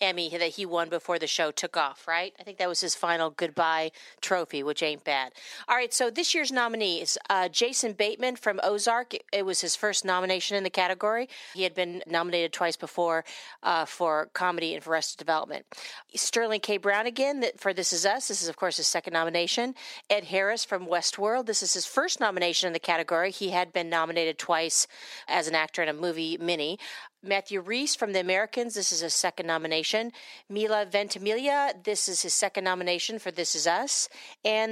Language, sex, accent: English, female, American